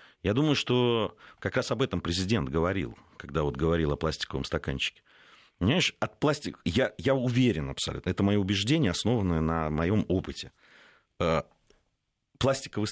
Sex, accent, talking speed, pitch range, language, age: male, native, 140 wpm, 85-115 Hz, Russian, 40-59